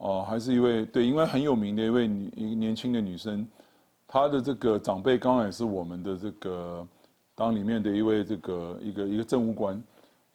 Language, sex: Chinese, male